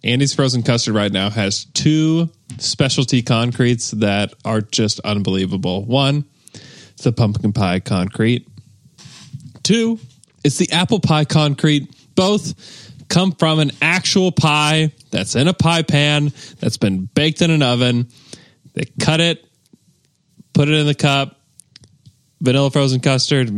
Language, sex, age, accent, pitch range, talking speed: English, male, 20-39, American, 115-155 Hz, 135 wpm